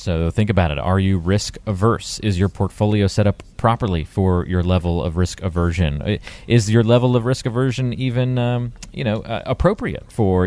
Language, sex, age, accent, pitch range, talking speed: English, male, 30-49, American, 90-110 Hz, 190 wpm